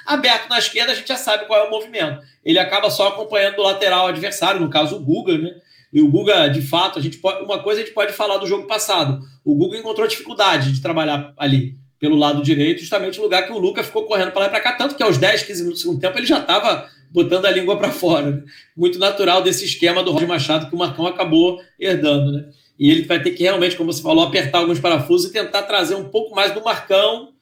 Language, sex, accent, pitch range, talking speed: Portuguese, male, Brazilian, 175-245 Hz, 245 wpm